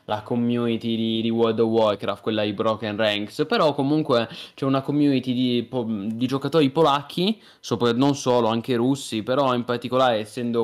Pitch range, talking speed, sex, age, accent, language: 115-135 Hz, 160 wpm, male, 20-39, native, Italian